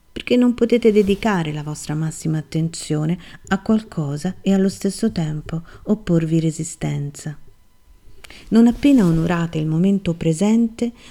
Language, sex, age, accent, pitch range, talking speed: Italian, female, 40-59, native, 165-210 Hz, 120 wpm